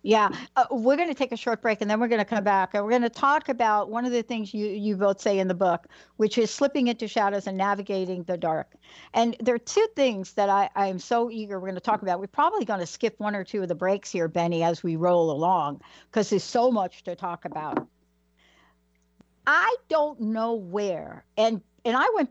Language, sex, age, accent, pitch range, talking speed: English, female, 60-79, American, 180-240 Hz, 240 wpm